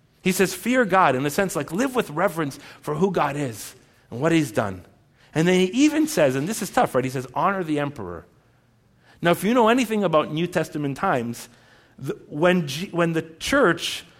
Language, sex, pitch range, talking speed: English, male, 145-215 Hz, 200 wpm